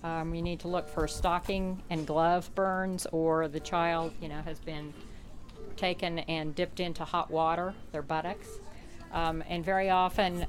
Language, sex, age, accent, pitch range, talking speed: English, female, 50-69, American, 160-185 Hz, 165 wpm